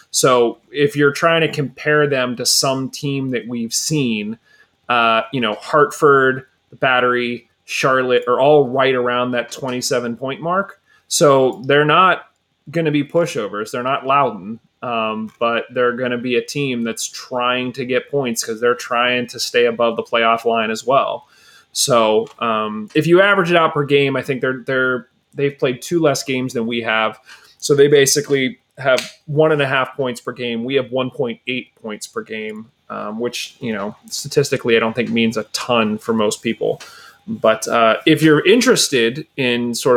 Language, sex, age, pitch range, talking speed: English, male, 30-49, 120-150 Hz, 185 wpm